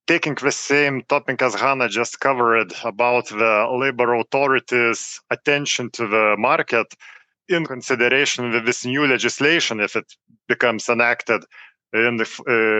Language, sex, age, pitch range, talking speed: English, male, 40-59, 115-135 Hz, 125 wpm